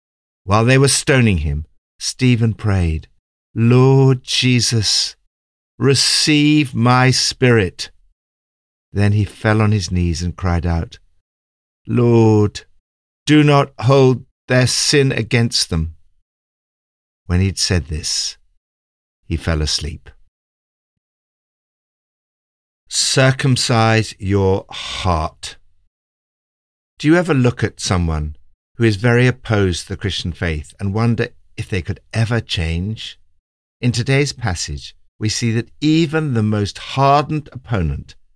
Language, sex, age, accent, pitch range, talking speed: English, male, 50-69, British, 80-120 Hz, 115 wpm